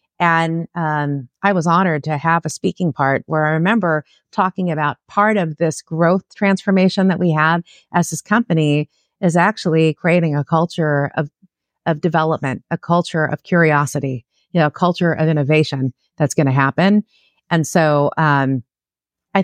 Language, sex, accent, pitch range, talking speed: English, female, American, 150-180 Hz, 160 wpm